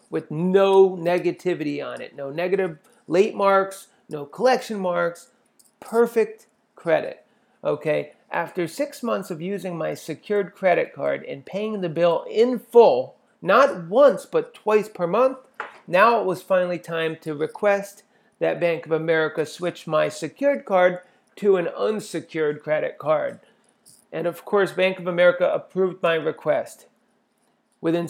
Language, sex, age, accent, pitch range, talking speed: English, male, 40-59, American, 165-205 Hz, 140 wpm